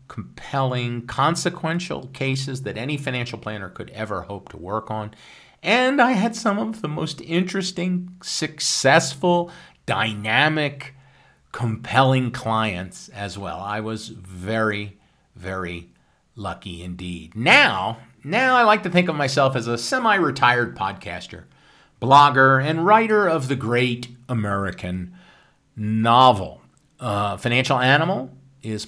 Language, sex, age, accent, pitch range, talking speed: English, male, 50-69, American, 105-145 Hz, 120 wpm